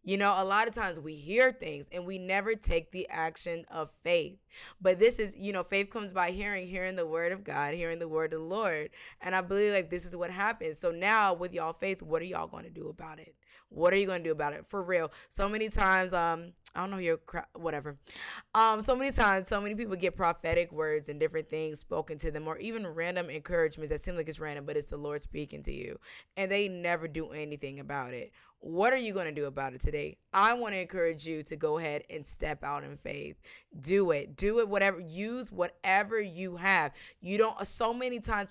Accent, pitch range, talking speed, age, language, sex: American, 165-220 Hz, 240 wpm, 20-39, English, female